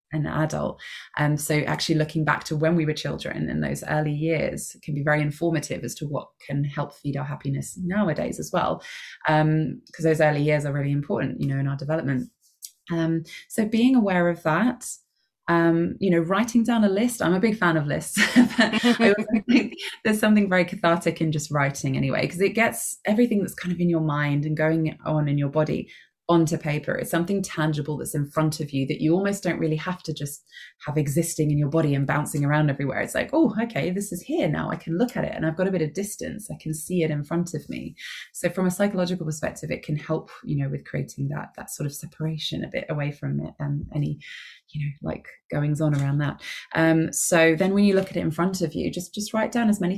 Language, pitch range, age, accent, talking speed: English, 150-190 Hz, 20-39, British, 230 wpm